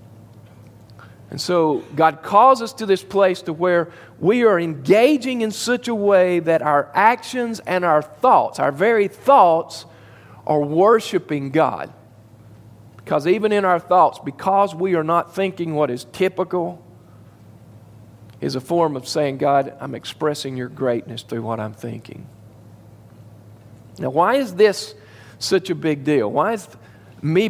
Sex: male